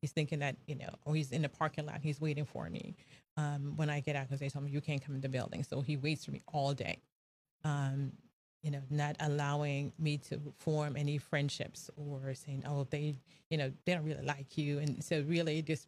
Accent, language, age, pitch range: American, English, 30-49, 140-155 Hz